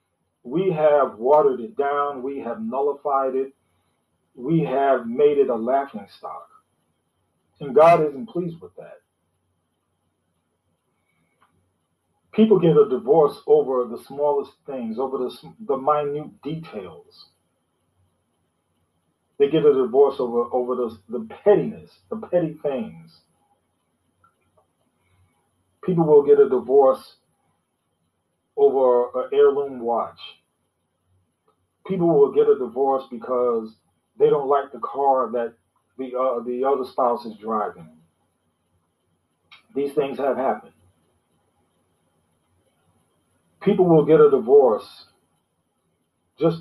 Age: 40-59